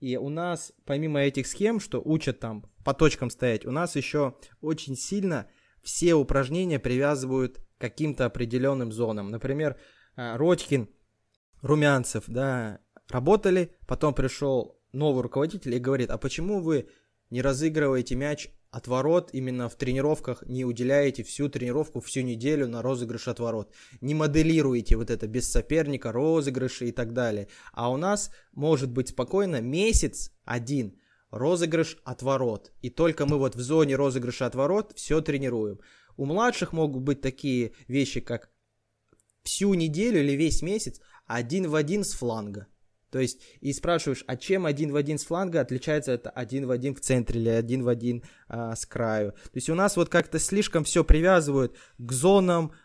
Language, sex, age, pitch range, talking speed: Russian, male, 20-39, 120-155 Hz, 150 wpm